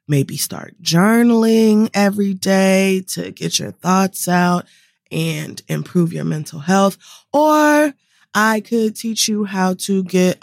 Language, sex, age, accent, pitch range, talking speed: English, female, 20-39, American, 175-230 Hz, 130 wpm